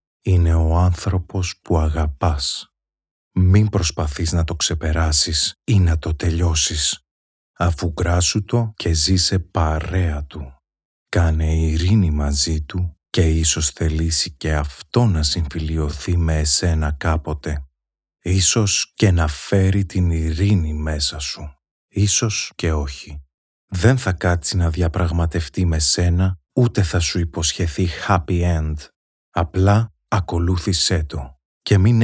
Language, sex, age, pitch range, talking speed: Greek, male, 30-49, 80-95 Hz, 120 wpm